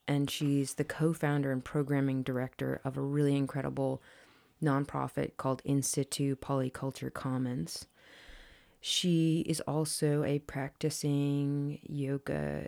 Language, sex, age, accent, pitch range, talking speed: English, female, 30-49, American, 140-155 Hz, 105 wpm